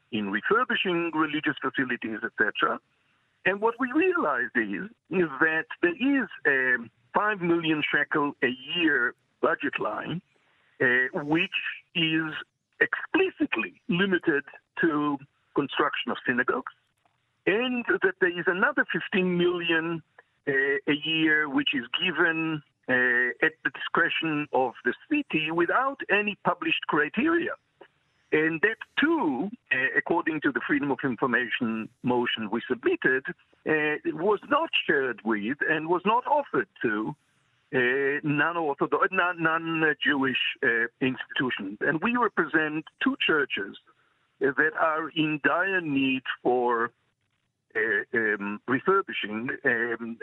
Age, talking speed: 50-69, 115 wpm